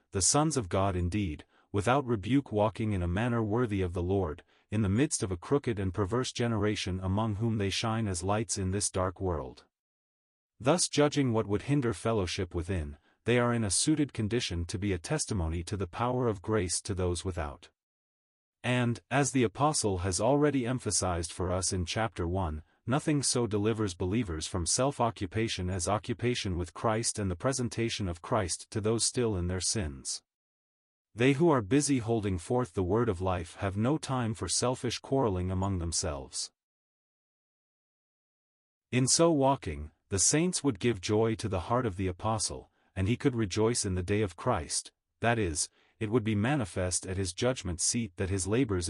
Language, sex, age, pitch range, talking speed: English, male, 30-49, 95-120 Hz, 180 wpm